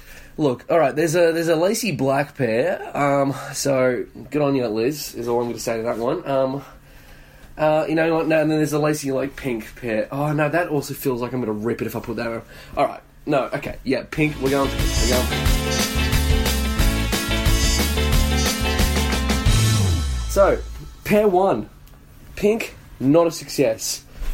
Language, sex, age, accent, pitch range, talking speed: English, male, 20-39, Australian, 105-160 Hz, 180 wpm